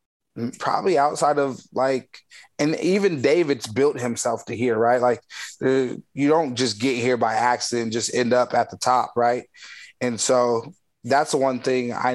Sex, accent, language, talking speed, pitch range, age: male, American, English, 175 wpm, 120-135 Hz, 20-39